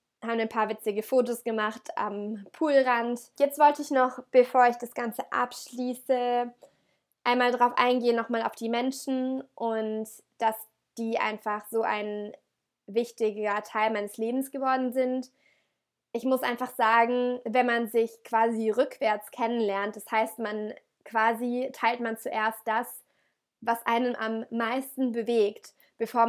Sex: female